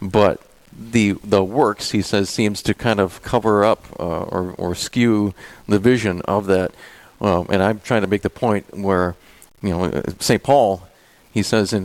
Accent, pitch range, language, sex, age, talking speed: American, 100-120 Hz, English, male, 50-69, 180 wpm